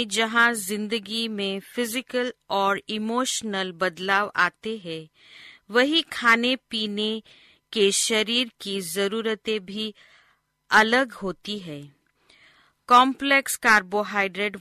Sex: female